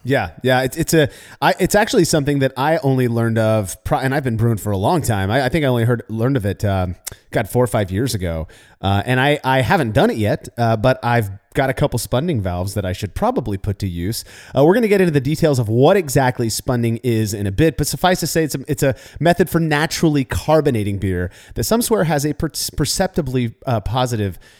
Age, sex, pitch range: 30-49, male, 110-155 Hz